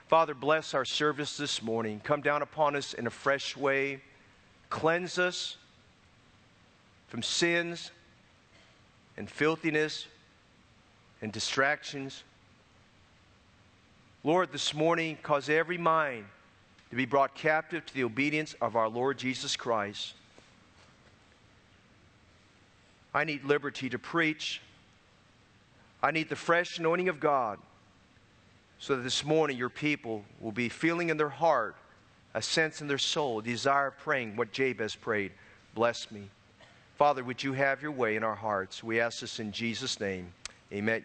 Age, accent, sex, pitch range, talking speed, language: 40-59, American, male, 105-150 Hz, 135 wpm, English